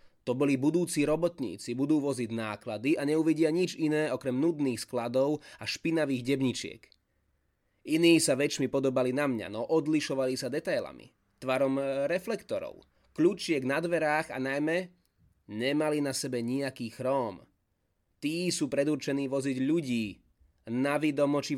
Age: 20-39